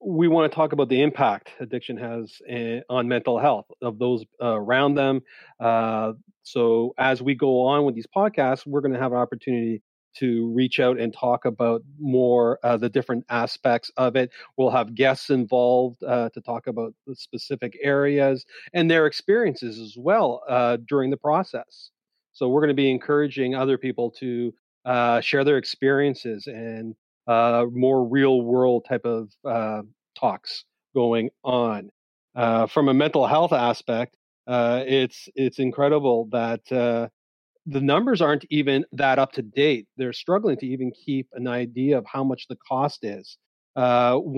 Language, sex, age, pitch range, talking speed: English, male, 40-59, 120-140 Hz, 160 wpm